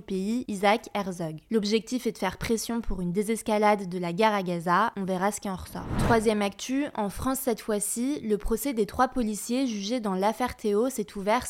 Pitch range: 200-240 Hz